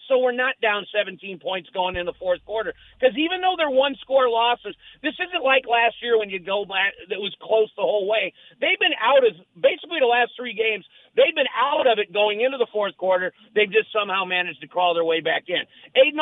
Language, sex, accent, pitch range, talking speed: English, male, American, 215-265 Hz, 235 wpm